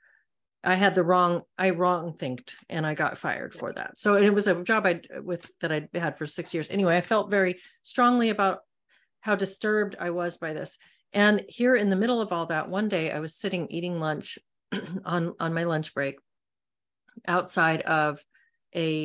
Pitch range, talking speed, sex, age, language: 155-195 Hz, 190 wpm, female, 40-59, English